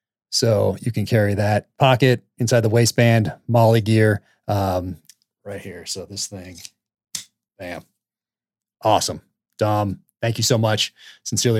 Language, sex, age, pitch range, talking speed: English, male, 30-49, 100-130 Hz, 130 wpm